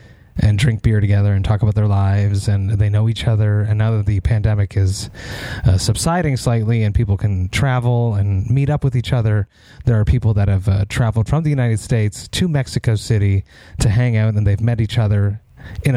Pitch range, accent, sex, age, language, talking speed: 105-120 Hz, American, male, 30-49, English, 210 wpm